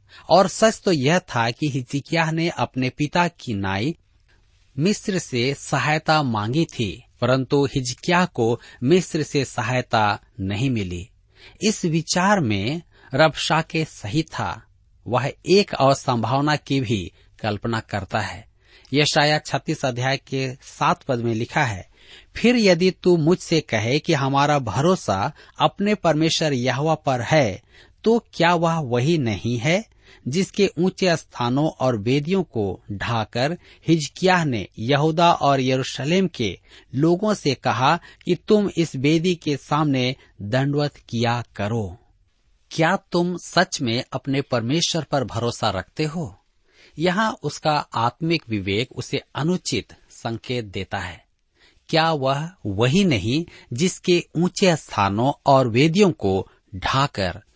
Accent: native